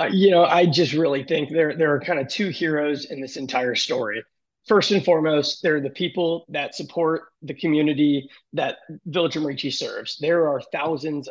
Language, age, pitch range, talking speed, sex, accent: English, 20-39, 140-170 Hz, 185 wpm, male, American